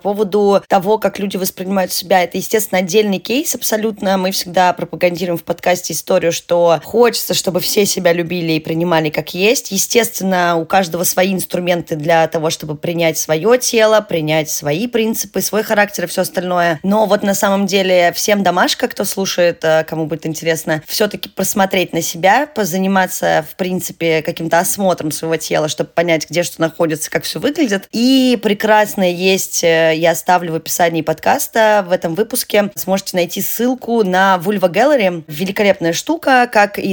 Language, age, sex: Russian, 20-39, female